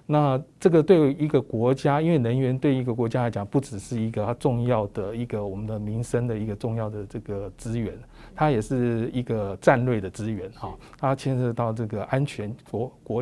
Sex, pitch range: male, 110-140 Hz